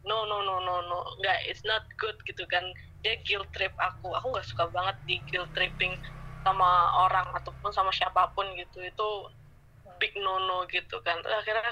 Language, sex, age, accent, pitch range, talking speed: Indonesian, female, 20-39, native, 185-255 Hz, 180 wpm